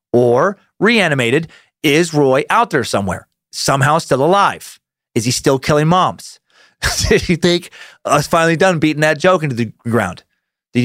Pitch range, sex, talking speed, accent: 115-160 Hz, male, 160 wpm, American